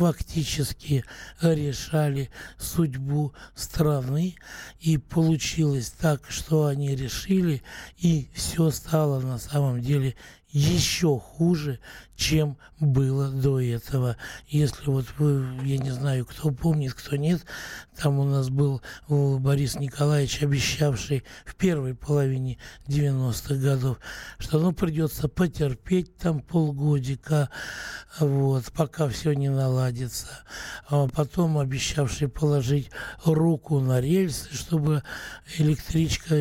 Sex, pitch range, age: male, 135-160 Hz, 60-79